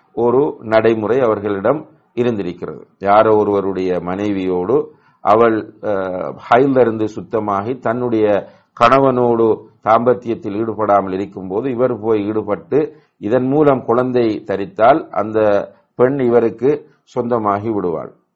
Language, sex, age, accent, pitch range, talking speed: English, male, 50-69, Indian, 105-130 Hz, 125 wpm